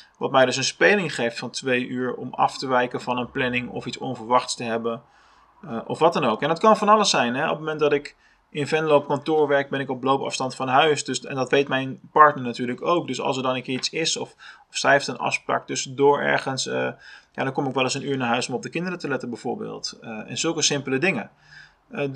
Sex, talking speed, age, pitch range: male, 255 wpm, 20-39, 125-160 Hz